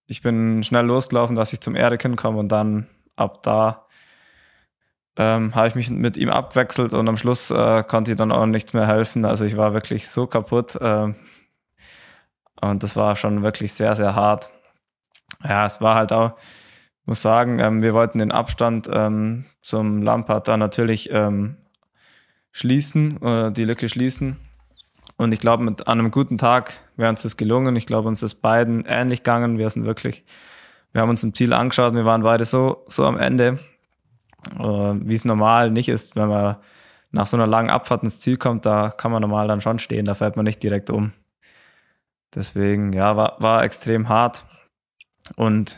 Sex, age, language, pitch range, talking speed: male, 20-39, German, 105-120 Hz, 180 wpm